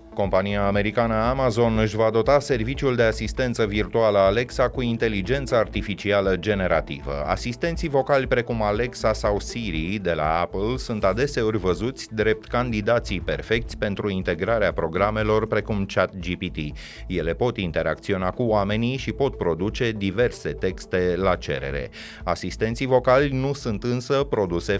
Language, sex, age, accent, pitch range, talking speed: Romanian, male, 30-49, native, 95-125 Hz, 130 wpm